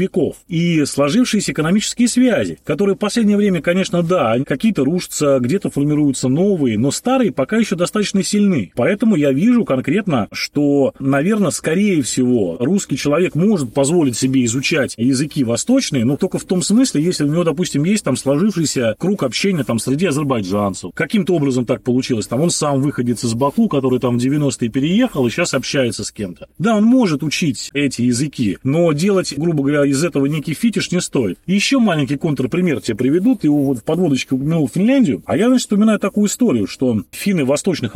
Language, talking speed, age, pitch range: Russian, 175 wpm, 30-49, 135-190 Hz